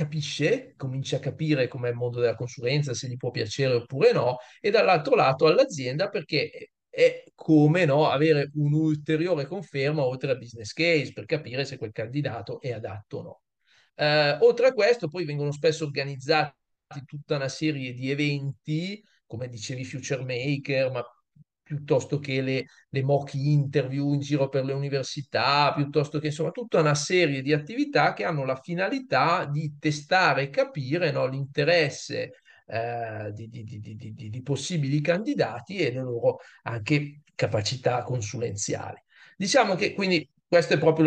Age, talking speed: 40-59, 150 wpm